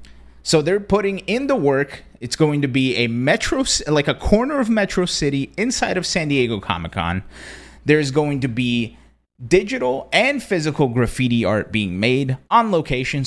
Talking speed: 165 wpm